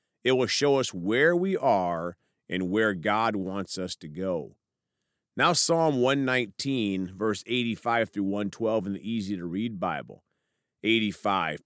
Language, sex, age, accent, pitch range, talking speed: English, male, 40-59, American, 100-140 Hz, 135 wpm